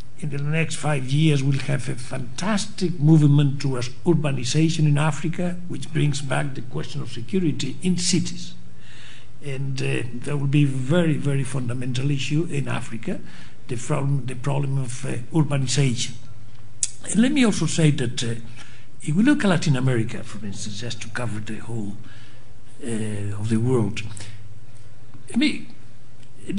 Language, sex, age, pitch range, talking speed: English, male, 60-79, 115-150 Hz, 155 wpm